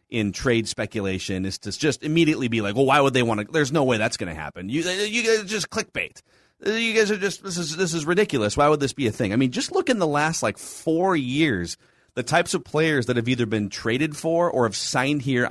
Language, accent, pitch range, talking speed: English, American, 105-145 Hz, 260 wpm